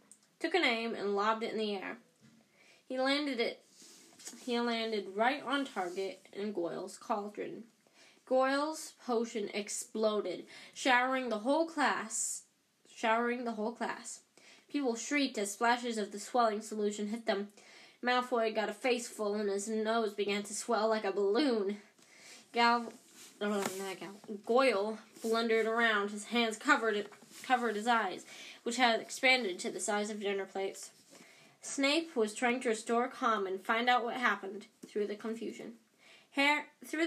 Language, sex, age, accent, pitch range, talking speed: English, female, 10-29, American, 210-250 Hz, 150 wpm